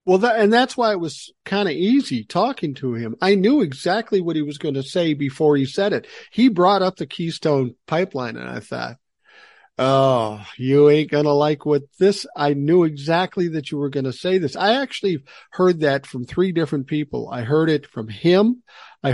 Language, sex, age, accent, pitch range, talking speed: English, male, 50-69, American, 130-175 Hz, 205 wpm